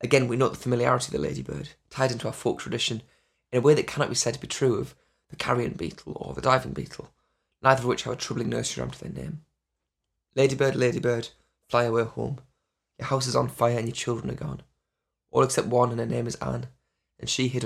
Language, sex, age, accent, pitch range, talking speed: English, male, 20-39, British, 115-135 Hz, 230 wpm